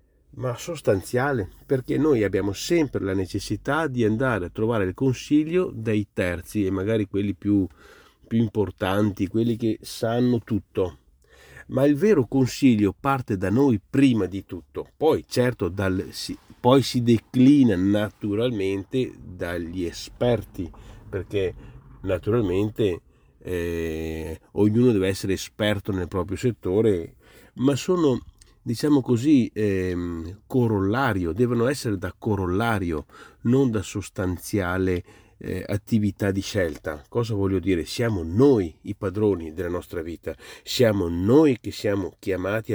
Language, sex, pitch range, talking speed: Italian, male, 95-120 Hz, 125 wpm